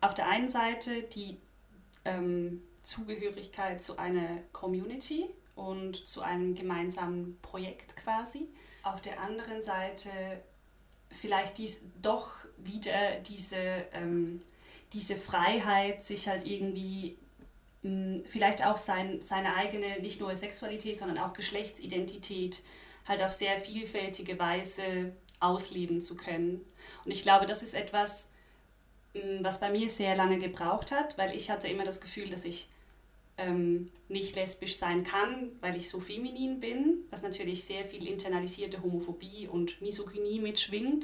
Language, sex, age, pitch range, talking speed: German, female, 30-49, 185-210 Hz, 135 wpm